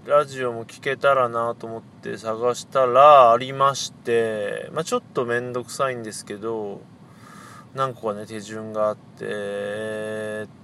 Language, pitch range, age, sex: Japanese, 115-185 Hz, 20-39, male